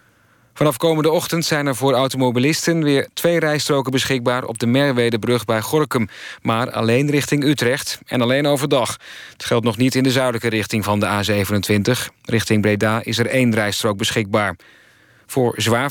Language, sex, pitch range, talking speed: Dutch, male, 110-135 Hz, 160 wpm